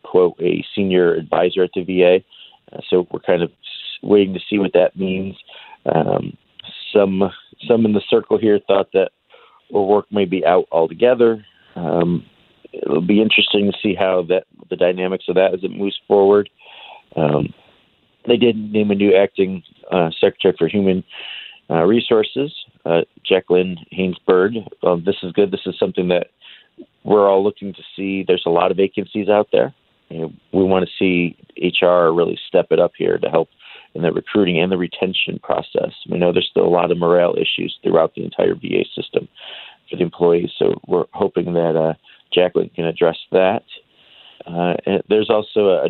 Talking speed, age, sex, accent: 180 wpm, 40-59, male, American